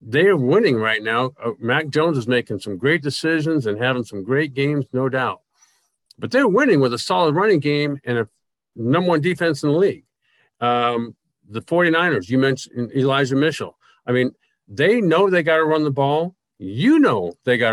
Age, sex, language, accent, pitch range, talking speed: 50-69, male, English, American, 125-175 Hz, 195 wpm